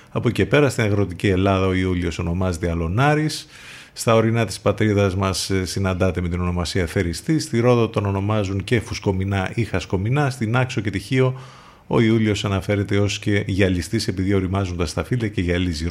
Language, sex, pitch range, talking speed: Greek, male, 90-115 Hz, 165 wpm